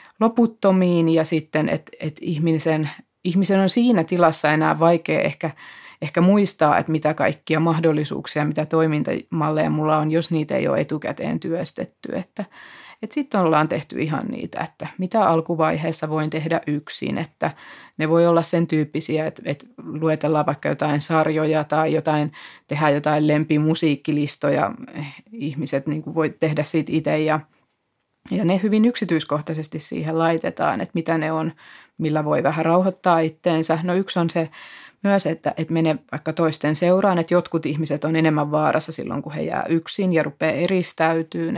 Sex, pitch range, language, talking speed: female, 155-175 Hz, Finnish, 155 wpm